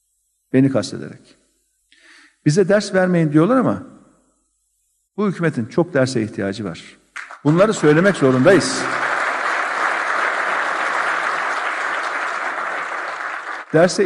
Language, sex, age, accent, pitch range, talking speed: Turkish, male, 50-69, native, 135-190 Hz, 75 wpm